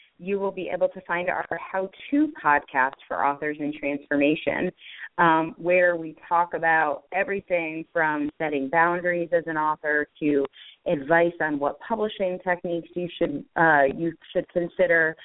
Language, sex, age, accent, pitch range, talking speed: English, female, 30-49, American, 150-180 Hz, 140 wpm